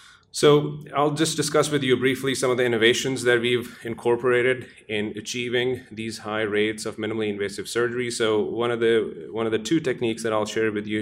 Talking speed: 200 wpm